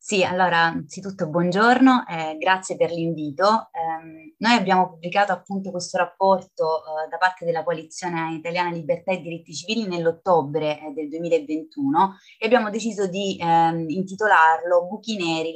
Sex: female